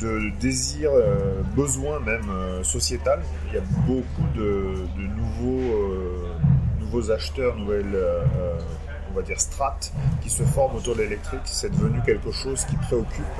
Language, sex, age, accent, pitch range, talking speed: French, male, 30-49, French, 75-115 Hz, 155 wpm